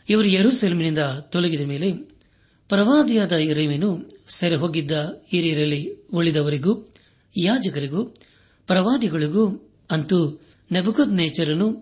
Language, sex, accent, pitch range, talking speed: Kannada, male, native, 150-195 Hz, 70 wpm